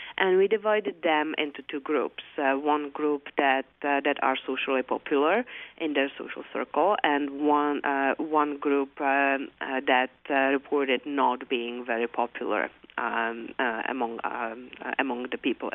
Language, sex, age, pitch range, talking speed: English, female, 40-59, 130-150 Hz, 160 wpm